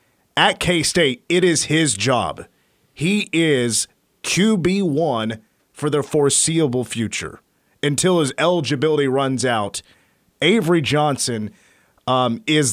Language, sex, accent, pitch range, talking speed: English, male, American, 120-150 Hz, 105 wpm